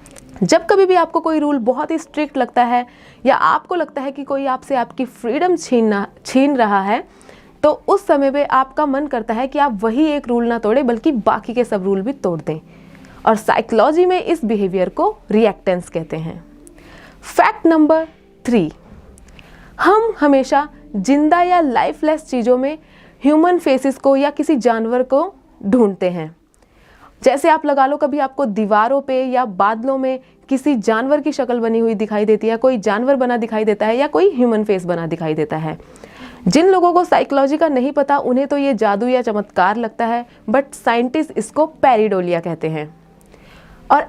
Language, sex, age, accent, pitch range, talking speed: Hindi, female, 20-39, native, 225-300 Hz, 180 wpm